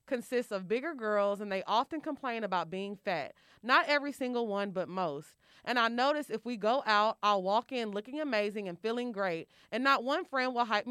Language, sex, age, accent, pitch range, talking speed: English, female, 30-49, American, 195-255 Hz, 210 wpm